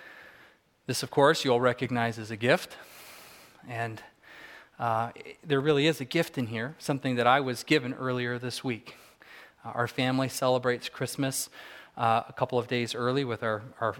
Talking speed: 165 wpm